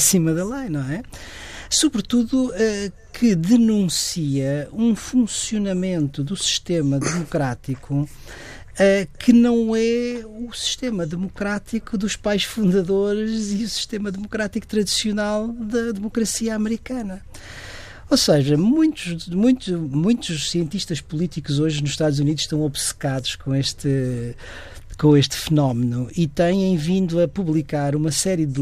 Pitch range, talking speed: 140-205 Hz, 120 wpm